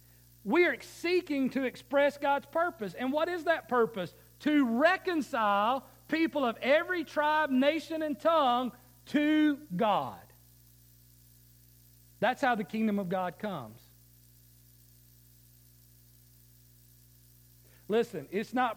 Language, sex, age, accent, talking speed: English, male, 50-69, American, 105 wpm